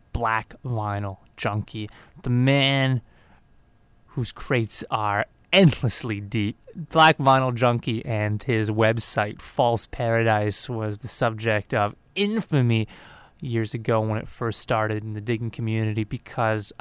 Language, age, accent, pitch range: English, 20-39, American, 110-125 Hz